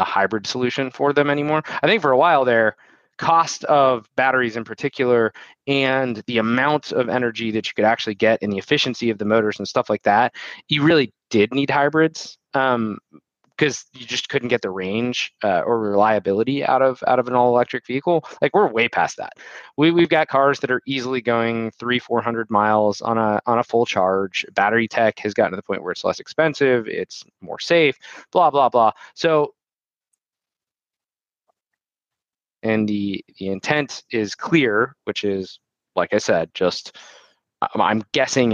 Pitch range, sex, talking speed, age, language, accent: 110-140 Hz, male, 180 wpm, 20-39, English, American